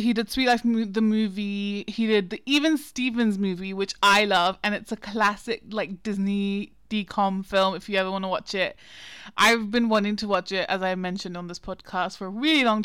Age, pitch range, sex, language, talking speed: 20-39, 190-215 Hz, female, English, 215 wpm